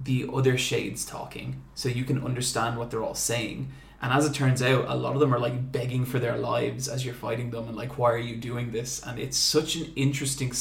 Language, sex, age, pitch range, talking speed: English, male, 20-39, 120-140 Hz, 245 wpm